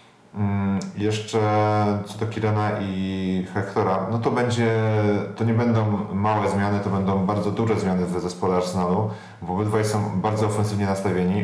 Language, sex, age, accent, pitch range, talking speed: Polish, male, 30-49, native, 90-105 Hz, 145 wpm